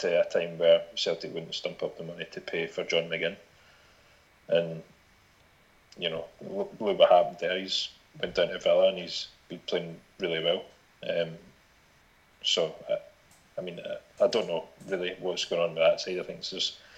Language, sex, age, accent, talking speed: English, male, 30-49, British, 185 wpm